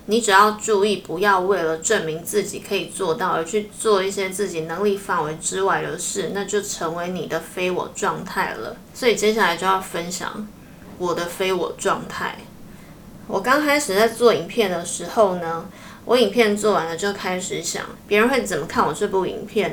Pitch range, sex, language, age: 185-215 Hz, female, Chinese, 20-39